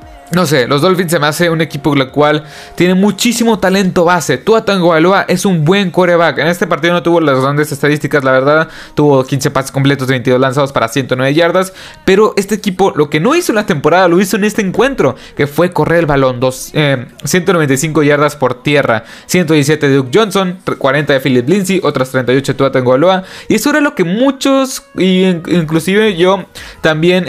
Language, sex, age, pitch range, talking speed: Spanish, male, 20-39, 135-180 Hz, 200 wpm